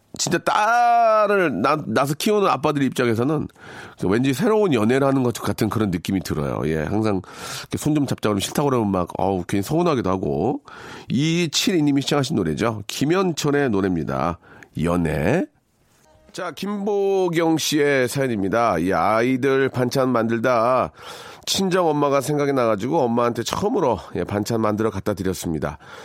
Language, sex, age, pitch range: Korean, male, 40-59, 105-140 Hz